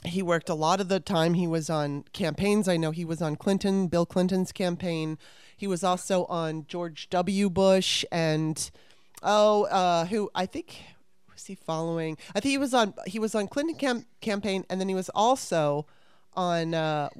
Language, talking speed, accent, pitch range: English, 190 wpm, American, 160-195 Hz